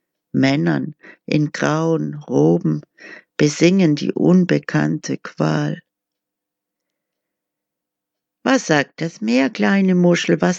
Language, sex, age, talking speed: German, female, 60-79, 85 wpm